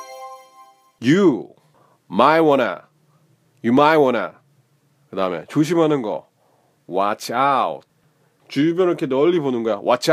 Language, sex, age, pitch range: Korean, male, 30-49, 135-185 Hz